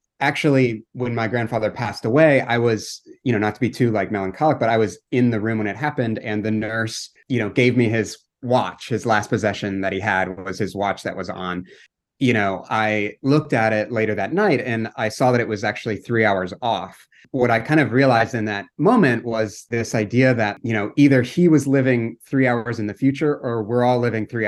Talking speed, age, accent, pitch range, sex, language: 230 wpm, 30-49, American, 100-125 Hz, male, English